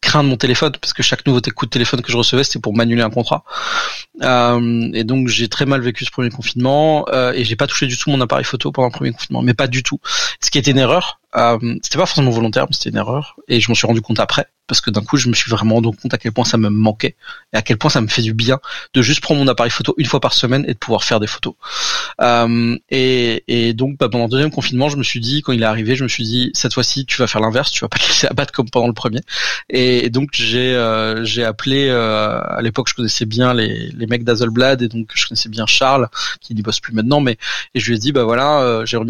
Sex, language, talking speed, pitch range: male, French, 280 wpm, 120-145 Hz